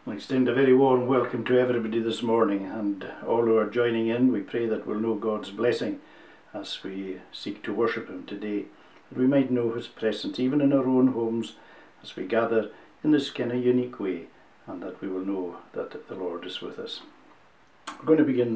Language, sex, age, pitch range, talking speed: English, male, 60-79, 115-135 Hz, 210 wpm